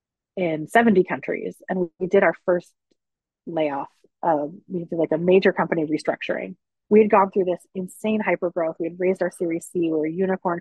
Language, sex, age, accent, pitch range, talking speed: English, female, 30-49, American, 160-185 Hz, 185 wpm